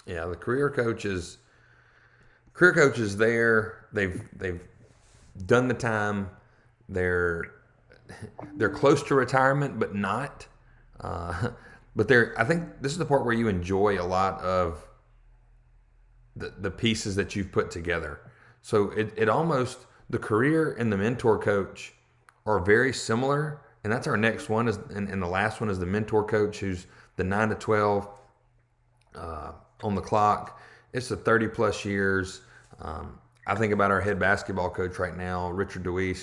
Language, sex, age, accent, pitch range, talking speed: English, male, 30-49, American, 95-115 Hz, 155 wpm